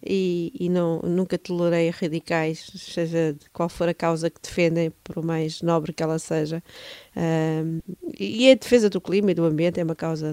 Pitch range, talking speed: 165-190 Hz, 185 wpm